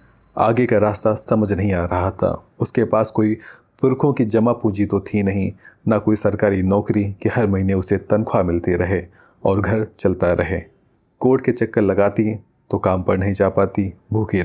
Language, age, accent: Hindi, 30-49, native